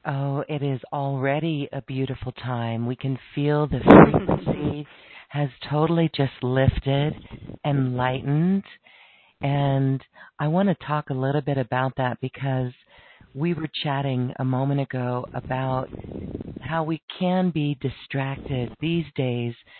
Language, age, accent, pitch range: English, 40-59, American, 130-155 Hz